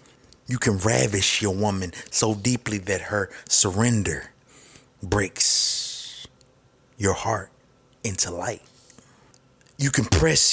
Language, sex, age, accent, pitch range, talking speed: English, male, 30-49, American, 100-130 Hz, 105 wpm